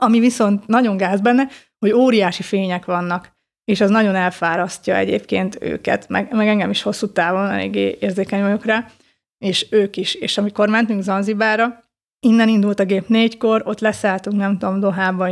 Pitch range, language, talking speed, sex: 190-225 Hz, Hungarian, 160 wpm, female